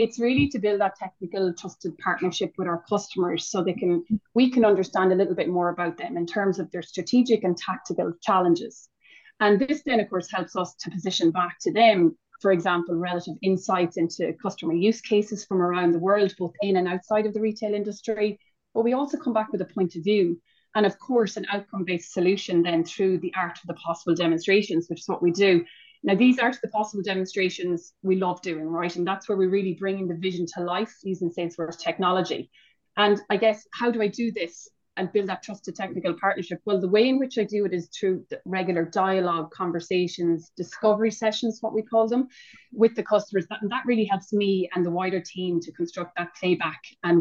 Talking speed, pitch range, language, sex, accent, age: 215 wpm, 175-210 Hz, English, female, Irish, 30-49